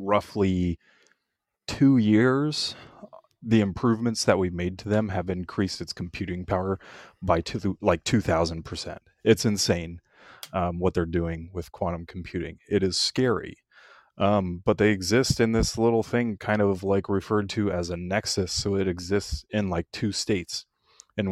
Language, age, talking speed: English, 30-49, 150 wpm